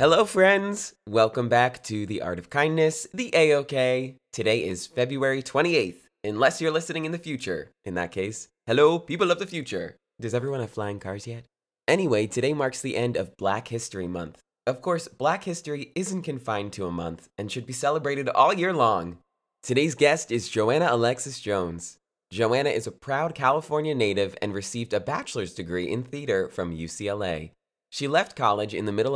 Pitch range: 105-145 Hz